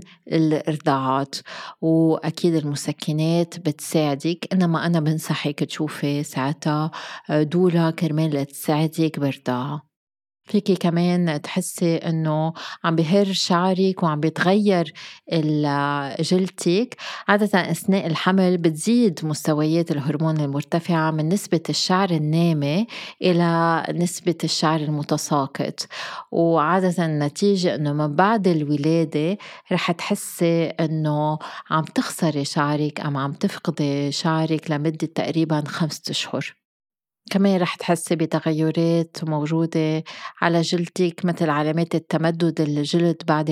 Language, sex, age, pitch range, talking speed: Arabic, female, 30-49, 155-175 Hz, 100 wpm